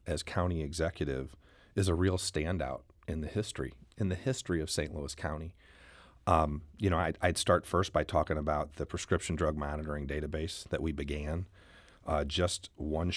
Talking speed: 175 wpm